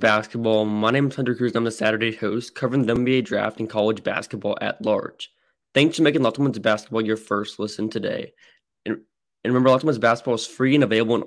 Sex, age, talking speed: male, 20-39, 215 wpm